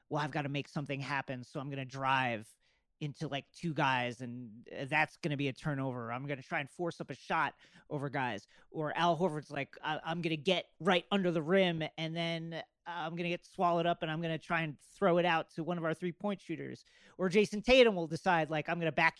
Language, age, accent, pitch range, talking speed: English, 40-59, American, 145-185 Hz, 255 wpm